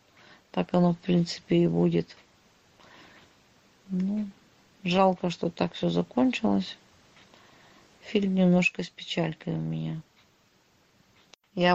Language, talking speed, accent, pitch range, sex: Russian, 95 wpm, native, 160-175 Hz, female